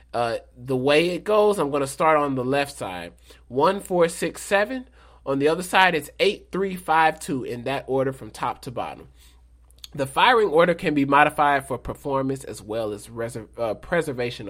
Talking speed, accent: 195 wpm, American